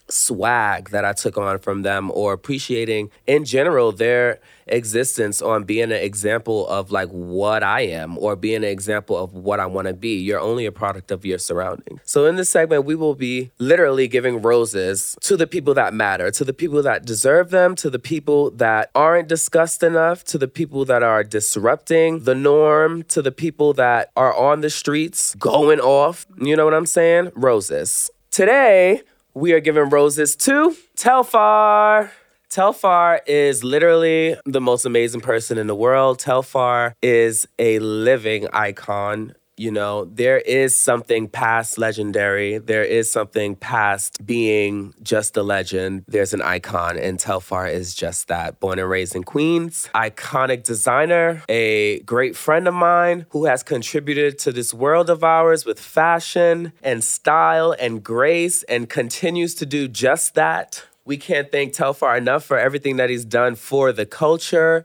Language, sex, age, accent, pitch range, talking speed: English, male, 20-39, American, 110-160 Hz, 165 wpm